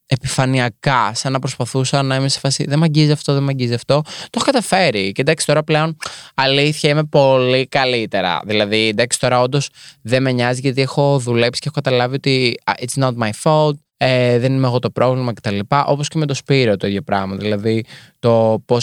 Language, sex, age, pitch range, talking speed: Greek, male, 20-39, 120-150 Hz, 200 wpm